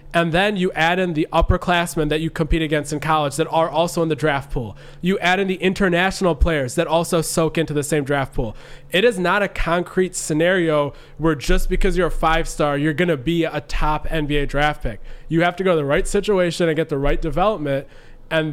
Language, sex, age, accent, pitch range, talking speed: English, male, 20-39, American, 150-175 Hz, 225 wpm